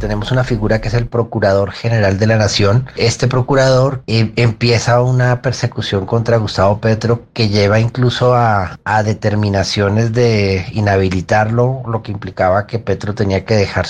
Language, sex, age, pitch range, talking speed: Spanish, male, 40-59, 105-125 Hz, 155 wpm